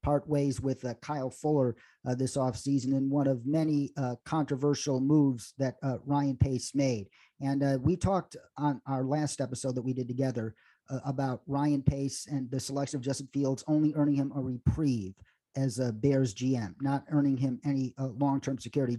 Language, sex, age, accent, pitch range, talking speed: English, male, 40-59, American, 130-150 Hz, 190 wpm